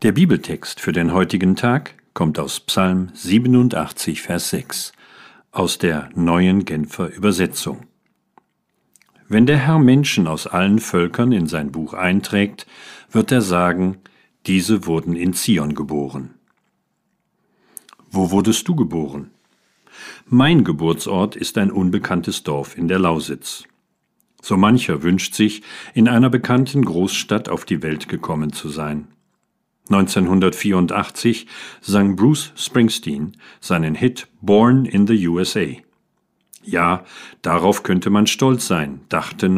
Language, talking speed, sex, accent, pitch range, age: German, 120 wpm, male, German, 85-115 Hz, 50-69